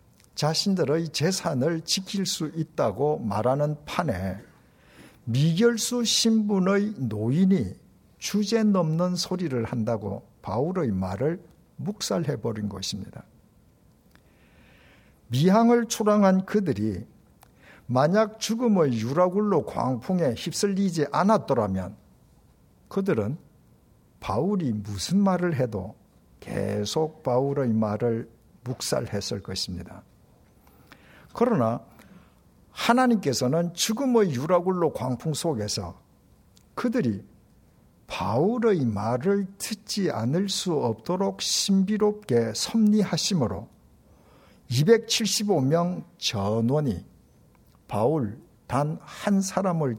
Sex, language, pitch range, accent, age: male, Korean, 120-200 Hz, native, 60-79